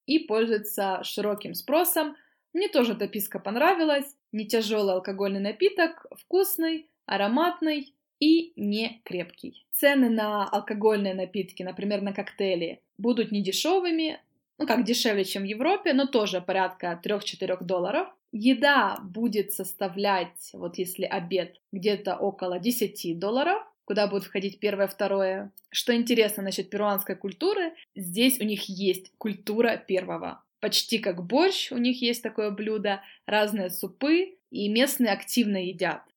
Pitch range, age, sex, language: 195-270 Hz, 20-39, female, Russian